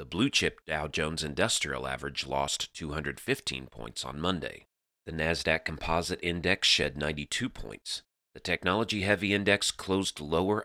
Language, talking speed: English, 135 wpm